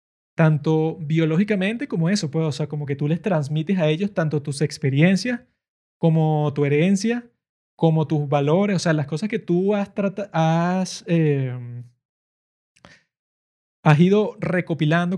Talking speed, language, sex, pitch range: 140 wpm, Spanish, male, 150-180 Hz